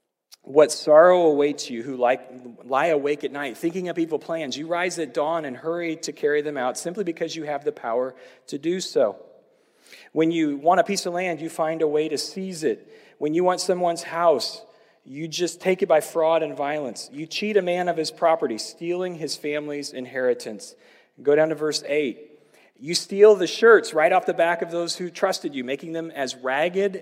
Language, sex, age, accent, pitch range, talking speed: English, male, 40-59, American, 145-180 Hz, 205 wpm